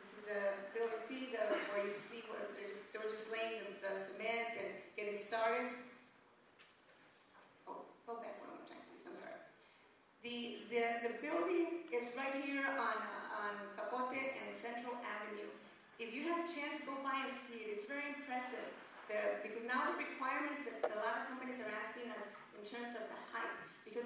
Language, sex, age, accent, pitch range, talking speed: English, female, 40-59, American, 215-255 Hz, 175 wpm